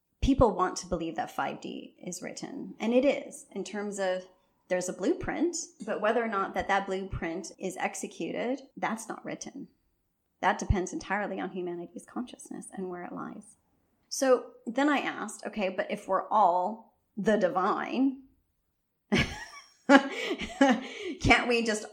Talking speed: 145 wpm